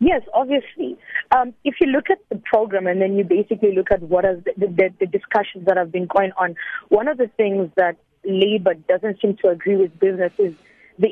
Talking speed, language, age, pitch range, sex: 215 wpm, English, 30-49, 185-220 Hz, female